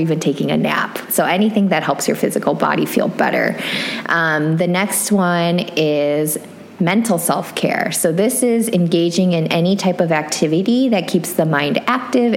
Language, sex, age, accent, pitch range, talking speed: English, female, 20-39, American, 160-200 Hz, 165 wpm